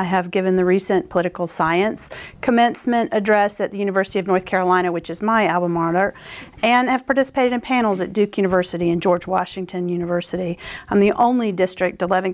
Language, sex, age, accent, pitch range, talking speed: English, female, 40-59, American, 185-215 Hz, 180 wpm